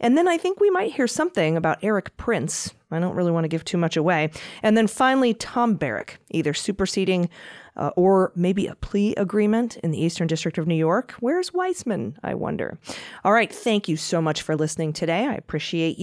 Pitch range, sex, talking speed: 160-215 Hz, female, 205 wpm